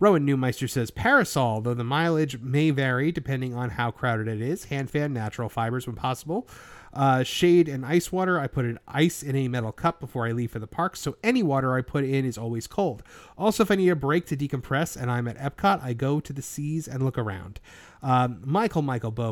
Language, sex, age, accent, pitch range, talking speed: English, male, 30-49, American, 130-170 Hz, 225 wpm